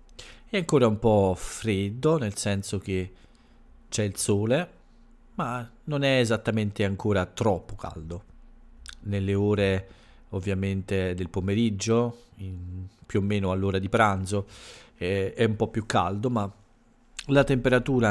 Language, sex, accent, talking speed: Italian, male, native, 125 wpm